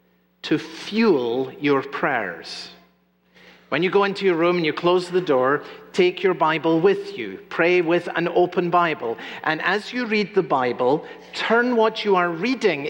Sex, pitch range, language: male, 140-180 Hz, English